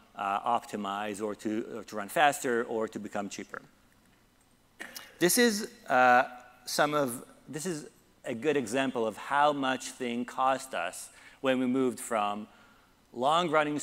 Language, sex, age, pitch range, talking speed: English, male, 40-59, 120-145 Hz, 150 wpm